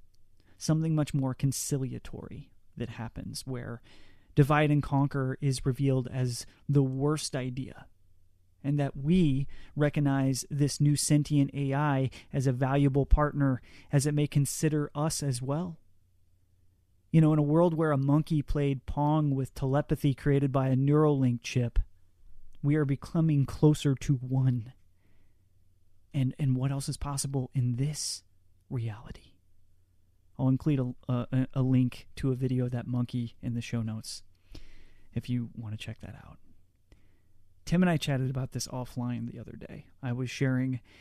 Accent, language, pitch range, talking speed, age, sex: American, English, 105-145 Hz, 150 wpm, 30-49, male